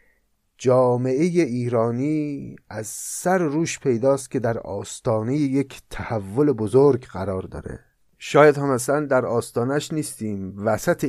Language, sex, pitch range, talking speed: Persian, male, 110-145 Hz, 120 wpm